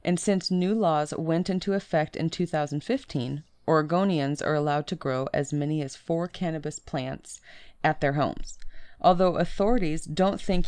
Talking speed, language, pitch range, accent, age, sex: 150 wpm, English, 145-180 Hz, American, 30-49, female